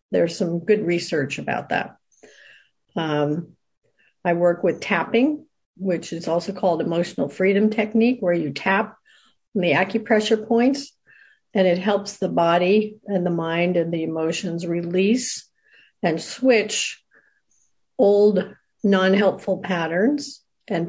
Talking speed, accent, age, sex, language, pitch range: 120 wpm, American, 50-69, female, English, 175-215 Hz